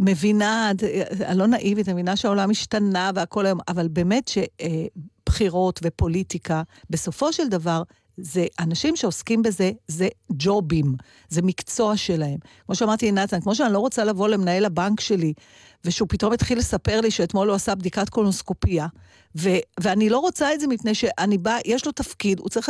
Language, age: Hebrew, 50-69